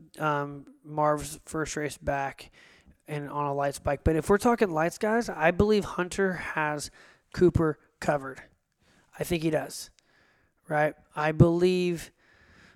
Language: English